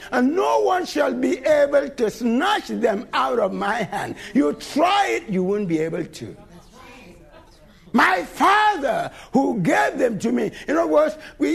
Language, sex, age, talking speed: English, male, 60-79, 165 wpm